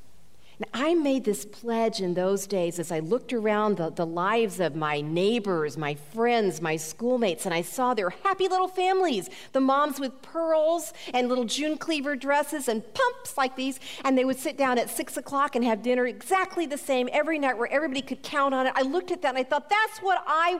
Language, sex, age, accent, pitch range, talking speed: English, female, 40-59, American, 185-290 Hz, 215 wpm